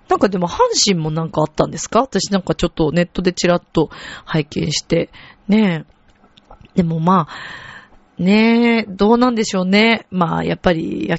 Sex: female